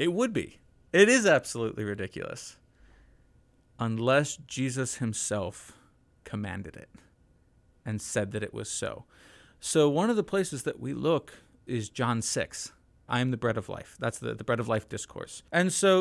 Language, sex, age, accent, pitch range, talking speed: English, male, 30-49, American, 120-170 Hz, 165 wpm